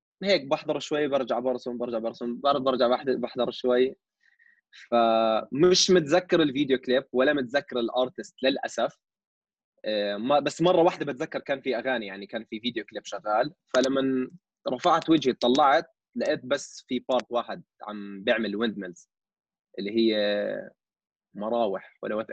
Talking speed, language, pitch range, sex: 130 wpm, Arabic, 120-155 Hz, male